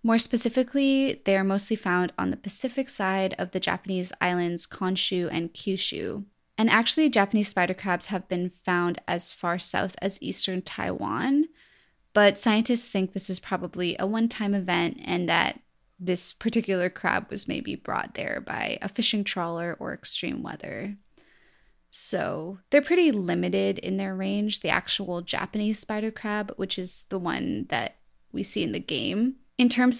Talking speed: 160 wpm